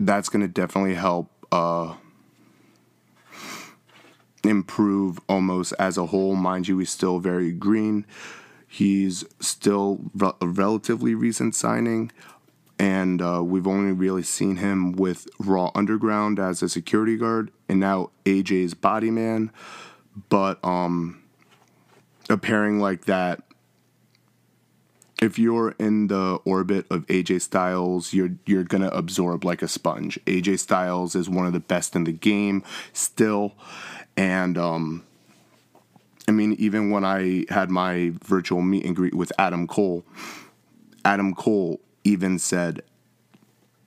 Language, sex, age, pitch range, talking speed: English, male, 20-39, 90-100 Hz, 130 wpm